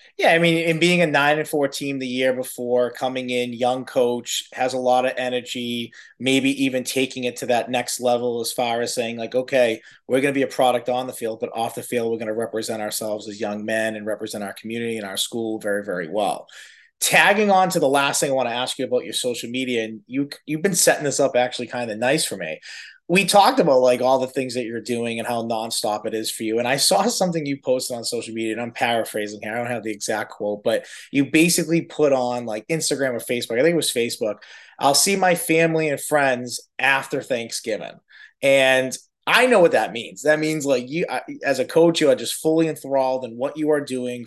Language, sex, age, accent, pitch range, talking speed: English, male, 30-49, American, 115-140 Hz, 235 wpm